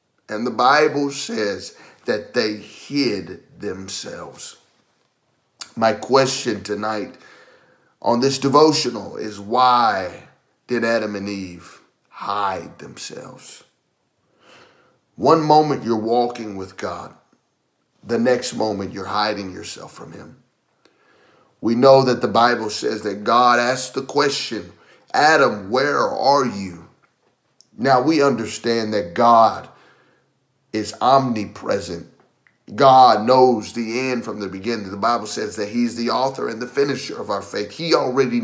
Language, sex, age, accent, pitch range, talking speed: English, male, 30-49, American, 110-135 Hz, 125 wpm